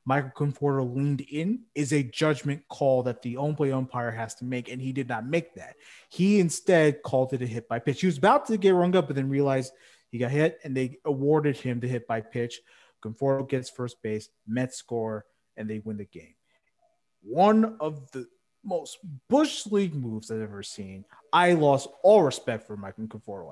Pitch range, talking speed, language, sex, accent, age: 125-180 Hz, 200 wpm, English, male, American, 30-49